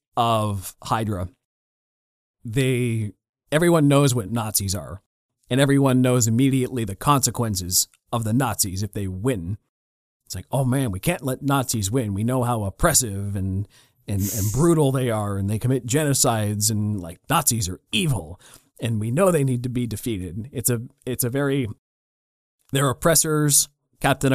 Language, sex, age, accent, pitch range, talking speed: English, male, 30-49, American, 110-135 Hz, 160 wpm